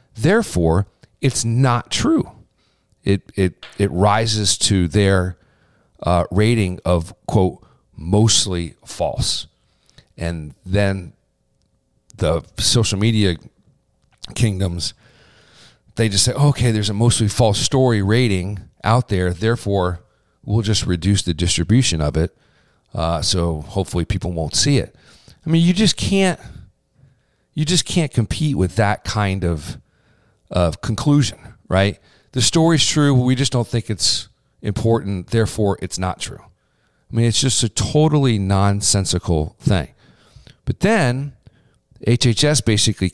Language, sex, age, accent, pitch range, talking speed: English, male, 40-59, American, 90-120 Hz, 125 wpm